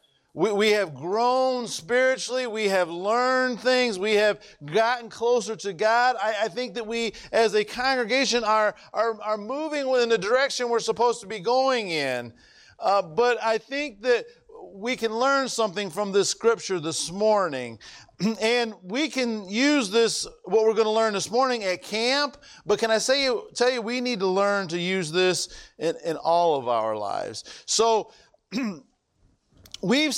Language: English